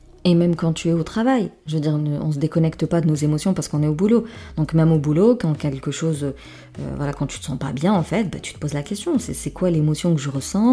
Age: 30-49